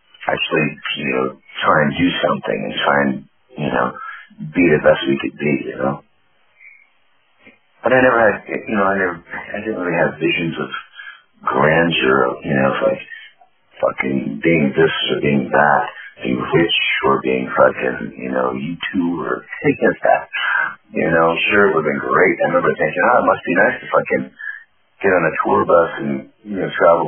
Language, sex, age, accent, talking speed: English, male, 40-59, American, 185 wpm